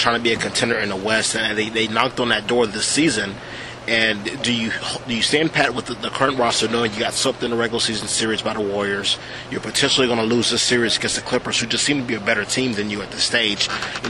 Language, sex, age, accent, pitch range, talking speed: English, male, 30-49, American, 115-130 Hz, 275 wpm